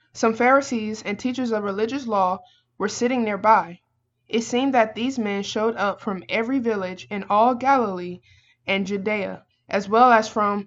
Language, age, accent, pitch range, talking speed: English, 20-39, American, 190-235 Hz, 165 wpm